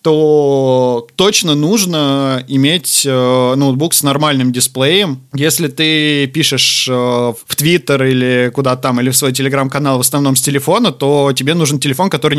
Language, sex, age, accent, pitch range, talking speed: Russian, male, 20-39, native, 125-145 Hz, 150 wpm